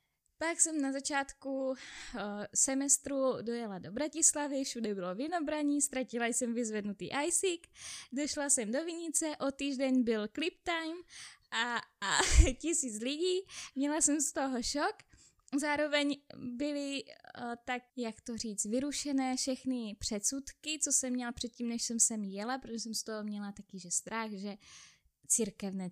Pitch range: 215-275 Hz